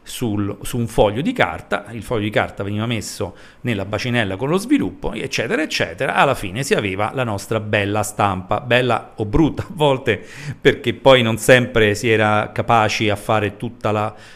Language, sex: Italian, male